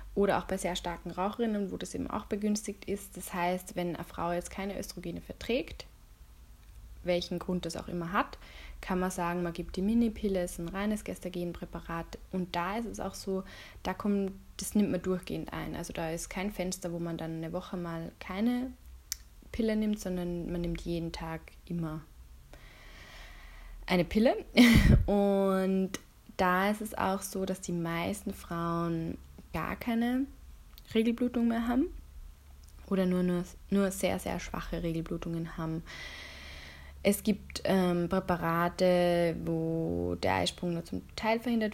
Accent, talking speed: German, 155 wpm